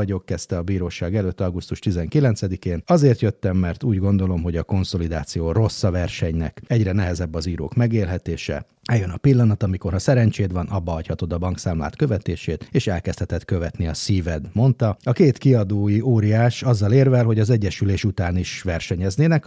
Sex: male